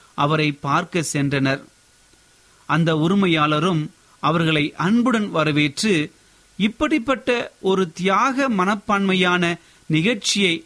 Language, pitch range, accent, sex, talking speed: Tamil, 150-200 Hz, native, male, 75 wpm